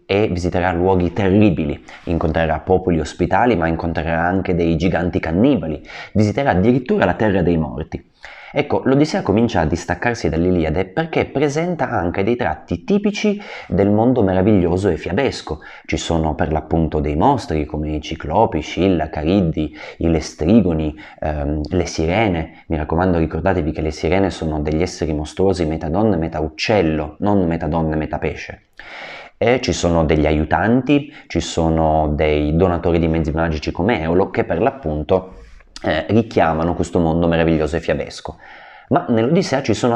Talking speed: 145 wpm